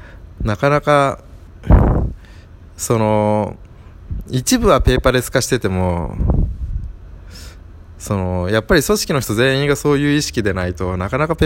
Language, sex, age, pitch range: Japanese, male, 20-39, 95-140 Hz